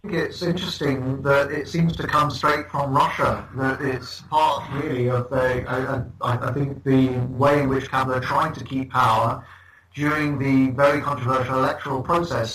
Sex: male